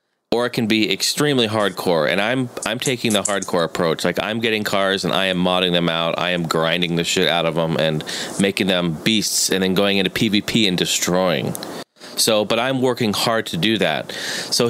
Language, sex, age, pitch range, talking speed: English, male, 30-49, 95-130 Hz, 210 wpm